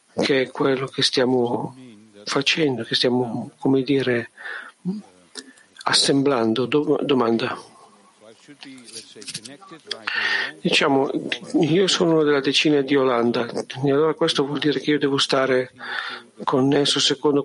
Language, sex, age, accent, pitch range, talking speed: Italian, male, 50-69, native, 125-150 Hz, 110 wpm